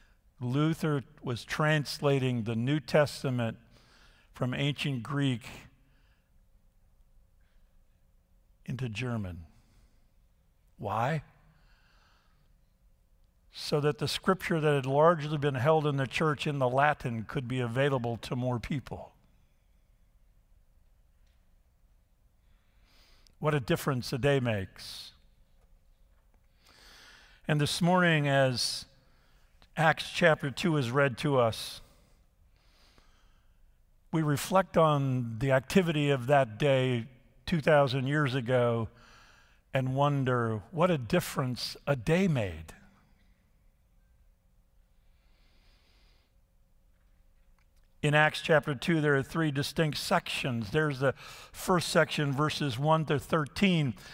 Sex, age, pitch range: male, 50-69, 100-150 Hz